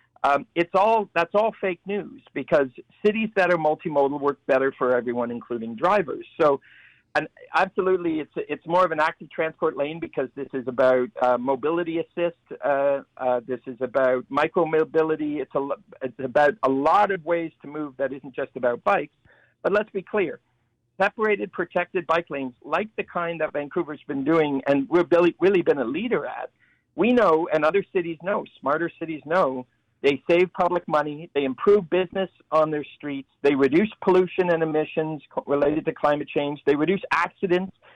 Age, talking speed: 50-69, 175 wpm